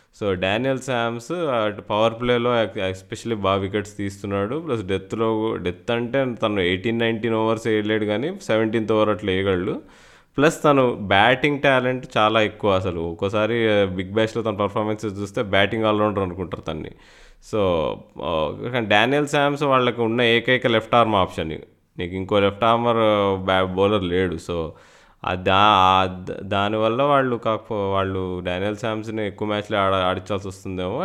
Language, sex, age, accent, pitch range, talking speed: Telugu, male, 20-39, native, 95-115 Hz, 135 wpm